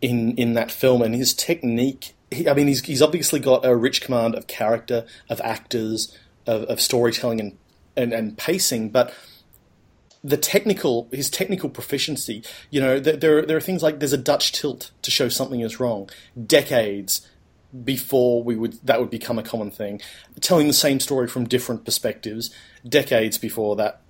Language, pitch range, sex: English, 110-130 Hz, male